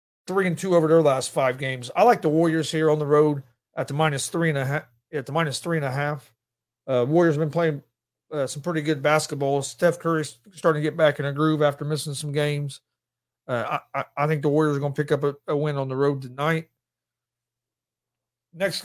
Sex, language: male, English